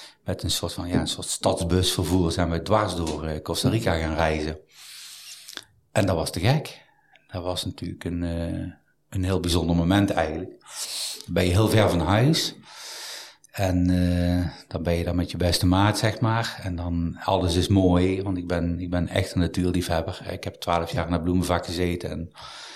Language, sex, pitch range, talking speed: Dutch, male, 85-95 Hz, 185 wpm